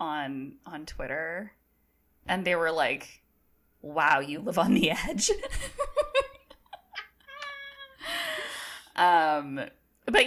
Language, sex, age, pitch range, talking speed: English, female, 20-39, 140-230 Hz, 90 wpm